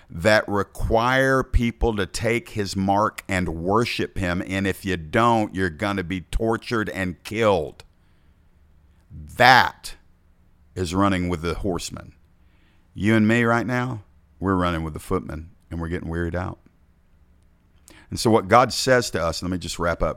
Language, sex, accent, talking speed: English, male, American, 160 wpm